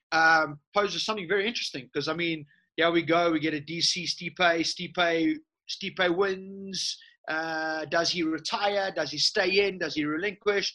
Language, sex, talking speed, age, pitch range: English, male, 165 wpm, 30-49, 155-195 Hz